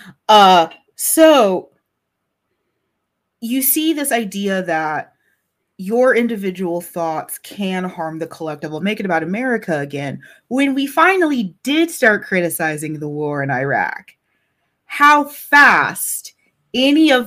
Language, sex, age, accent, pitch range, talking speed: English, female, 30-49, American, 165-240 Hz, 115 wpm